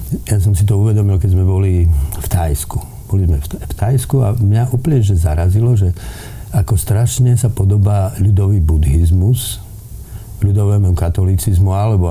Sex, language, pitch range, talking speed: male, Slovak, 85-105 Hz, 135 wpm